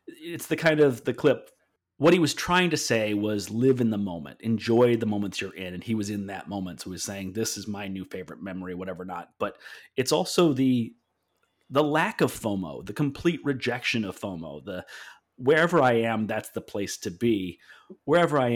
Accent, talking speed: American, 205 wpm